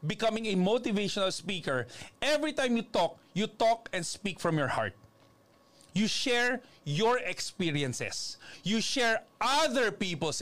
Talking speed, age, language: 130 wpm, 40-59, Filipino